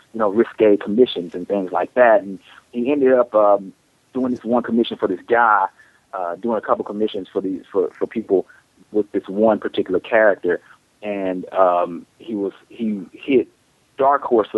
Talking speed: 175 wpm